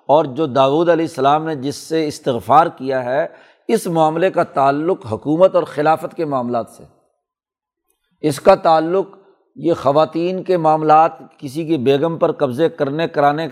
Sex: male